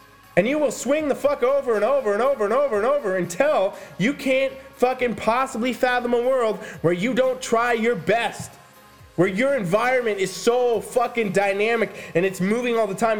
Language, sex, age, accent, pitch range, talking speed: English, male, 20-39, American, 200-255 Hz, 190 wpm